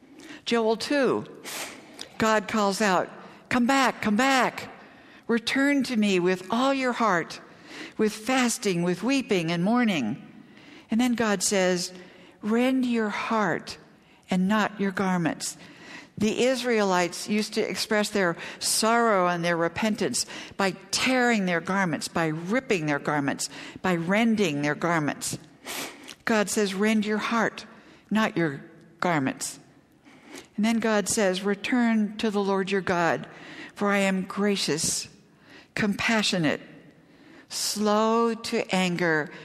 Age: 60-79